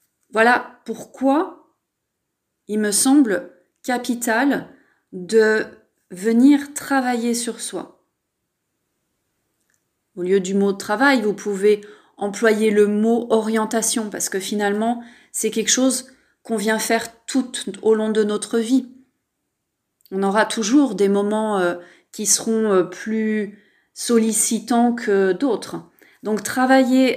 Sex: female